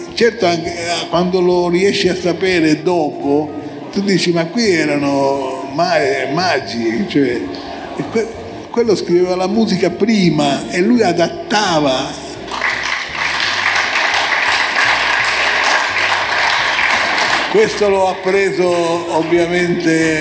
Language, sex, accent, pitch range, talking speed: Italian, male, native, 145-180 Hz, 85 wpm